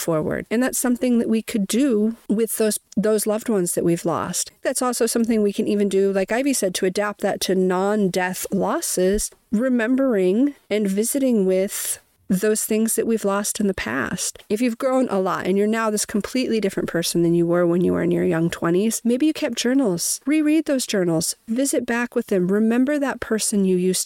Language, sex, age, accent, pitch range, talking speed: English, female, 40-59, American, 185-235 Hz, 205 wpm